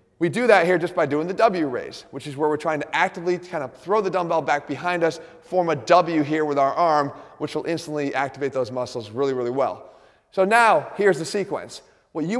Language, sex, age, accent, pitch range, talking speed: English, male, 30-49, American, 145-180 Hz, 230 wpm